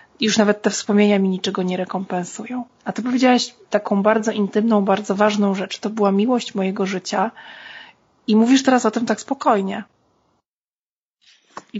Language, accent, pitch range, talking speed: Polish, native, 200-235 Hz, 155 wpm